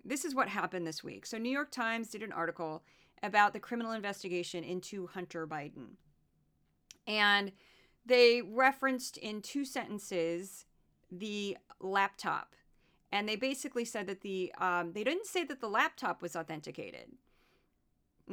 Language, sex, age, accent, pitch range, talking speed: English, female, 30-49, American, 185-250 Hz, 145 wpm